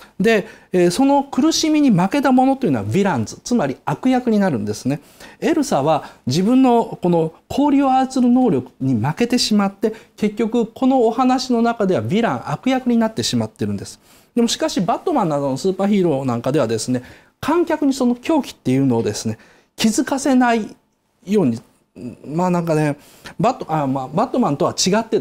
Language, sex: Japanese, male